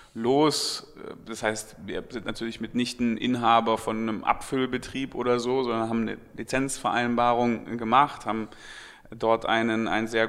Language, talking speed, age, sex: German, 145 wpm, 30-49, male